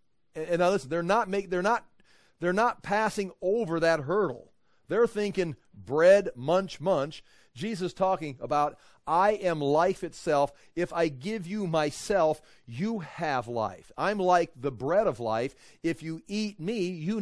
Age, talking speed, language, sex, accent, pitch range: 40-59, 155 wpm, English, male, American, 130-185 Hz